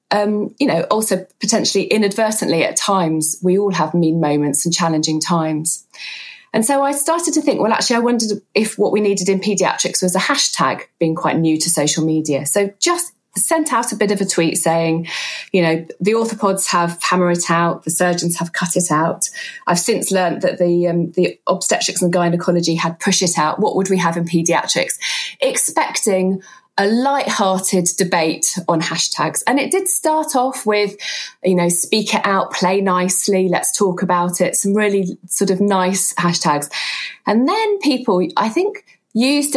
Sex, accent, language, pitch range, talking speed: female, British, English, 170-220 Hz, 180 wpm